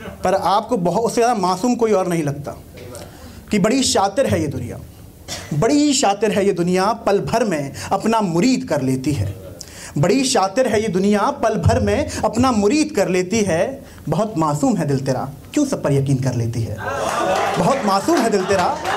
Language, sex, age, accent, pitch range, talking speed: Hindi, male, 30-49, native, 140-230 Hz, 185 wpm